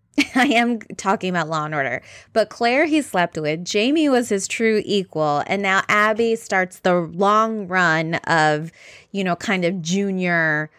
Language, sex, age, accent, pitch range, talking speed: English, female, 20-39, American, 165-215 Hz, 165 wpm